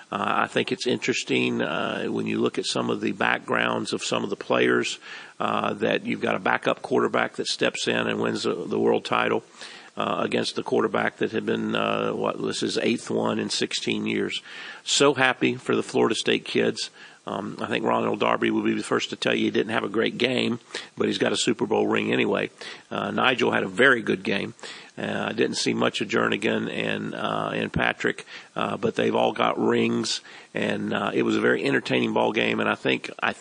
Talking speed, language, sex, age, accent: 215 wpm, English, male, 50-69, American